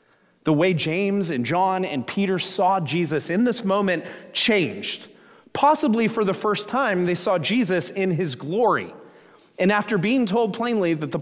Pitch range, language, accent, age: 130-190 Hz, English, American, 30-49